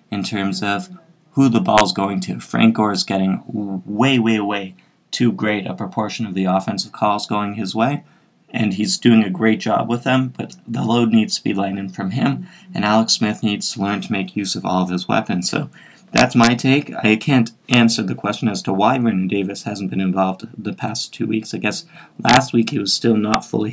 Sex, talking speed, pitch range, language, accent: male, 225 wpm, 100-120 Hz, English, American